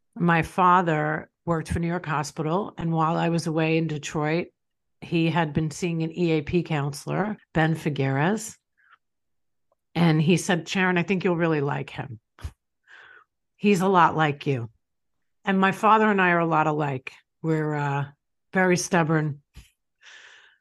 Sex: female